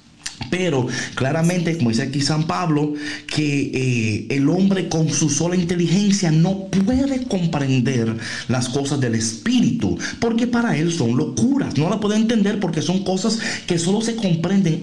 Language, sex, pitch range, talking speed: Spanish, male, 125-195 Hz, 155 wpm